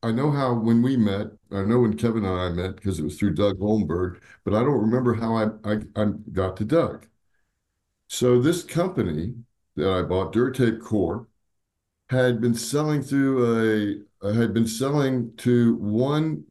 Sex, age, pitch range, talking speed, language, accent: male, 60-79, 100-130 Hz, 180 wpm, English, American